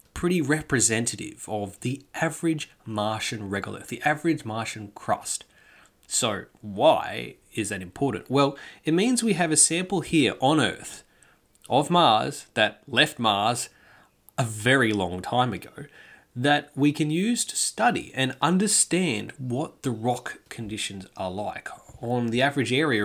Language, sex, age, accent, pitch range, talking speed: English, male, 20-39, Australian, 110-155 Hz, 140 wpm